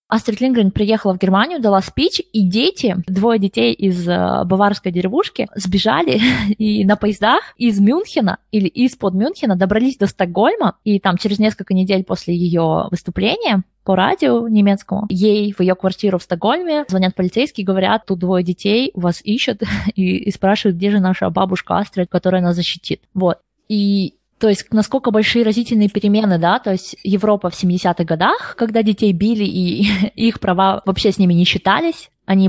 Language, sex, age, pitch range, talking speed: Russian, female, 20-39, 185-230 Hz, 170 wpm